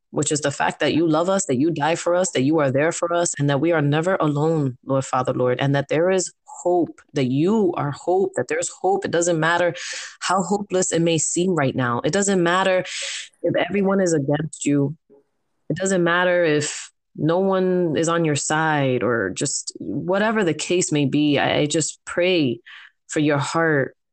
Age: 20-39